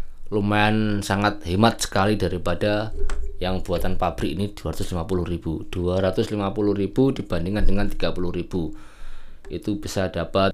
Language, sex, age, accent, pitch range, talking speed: Indonesian, male, 20-39, native, 85-105 Hz, 95 wpm